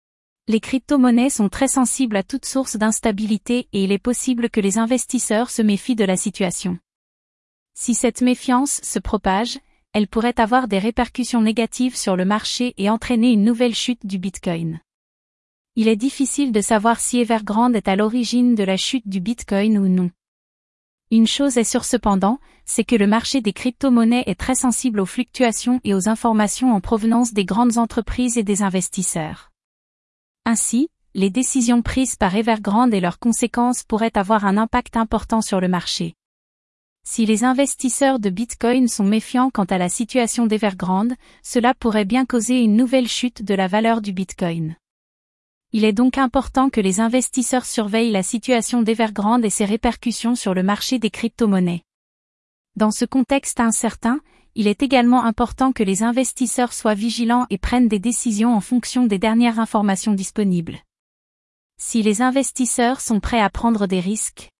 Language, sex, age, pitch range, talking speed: French, female, 30-49, 210-245 Hz, 165 wpm